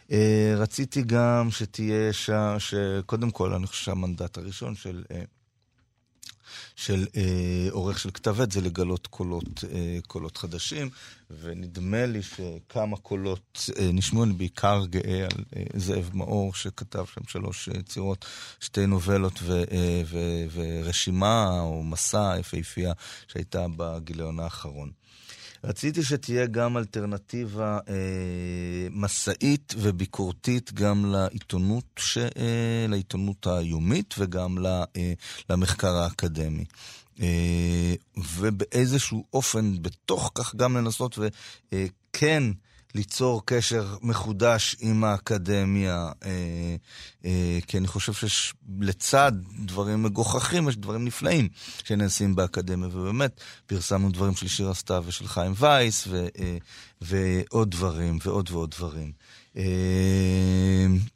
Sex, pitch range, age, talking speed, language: male, 90-115 Hz, 30-49, 120 wpm, Hebrew